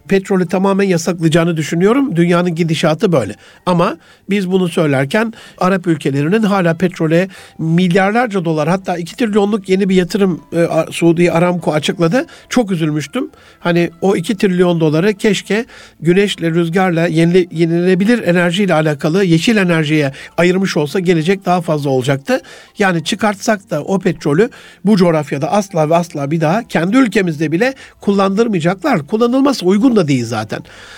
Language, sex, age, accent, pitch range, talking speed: Turkish, male, 60-79, native, 165-210 Hz, 135 wpm